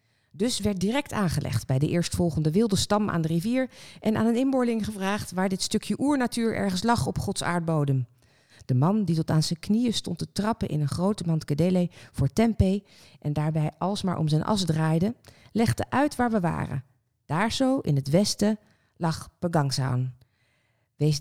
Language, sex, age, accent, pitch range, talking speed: Dutch, female, 40-59, Dutch, 145-200 Hz, 175 wpm